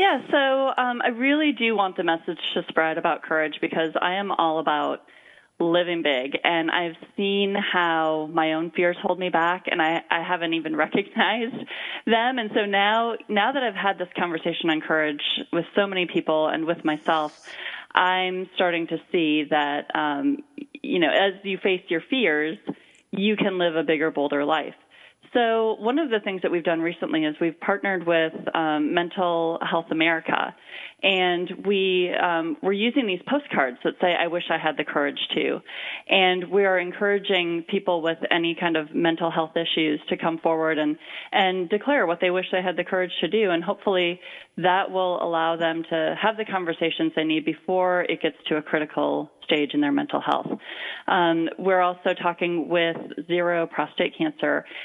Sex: female